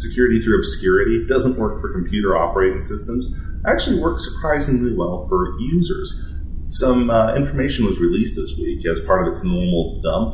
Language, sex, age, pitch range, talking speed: English, male, 30-49, 80-105 Hz, 165 wpm